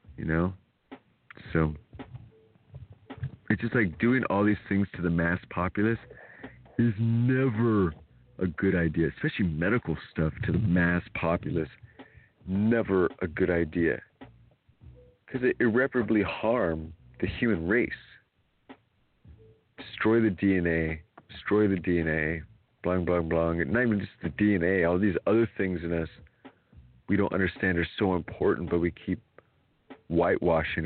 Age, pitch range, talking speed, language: 40-59, 85-115 Hz, 130 wpm, English